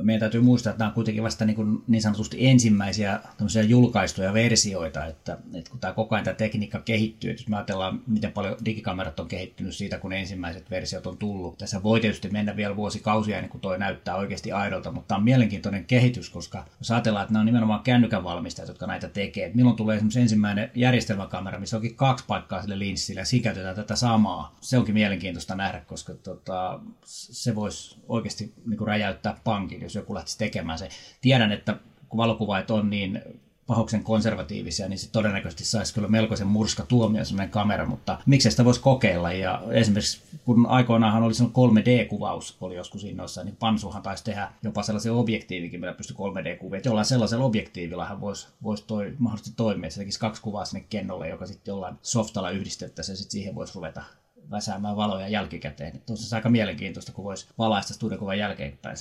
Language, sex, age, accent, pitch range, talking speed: Finnish, male, 30-49, native, 95-115 Hz, 175 wpm